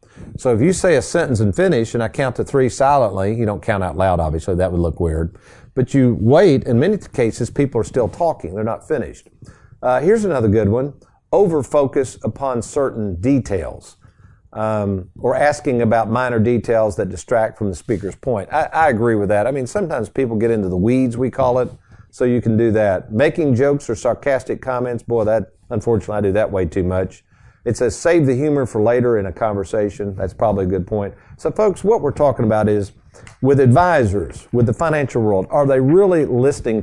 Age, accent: 50-69, American